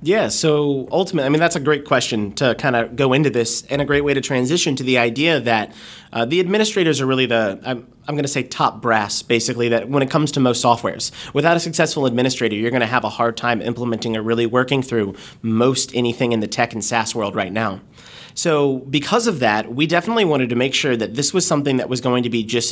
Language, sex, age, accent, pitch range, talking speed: English, male, 30-49, American, 120-155 Hz, 240 wpm